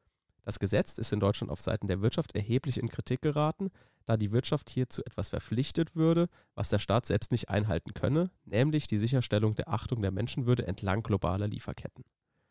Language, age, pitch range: German, 30-49, 105-140 Hz